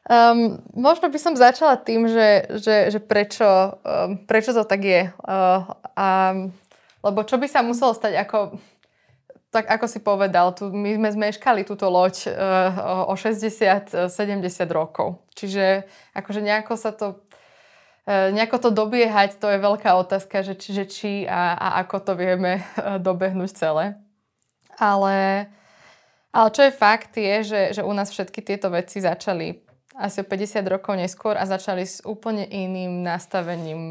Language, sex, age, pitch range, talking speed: Slovak, female, 20-39, 180-210 Hz, 150 wpm